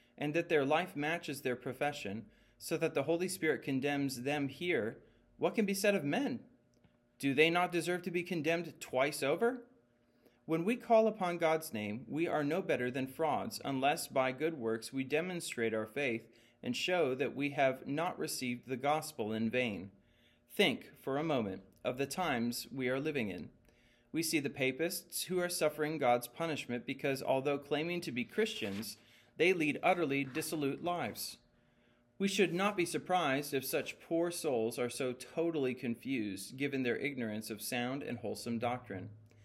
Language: English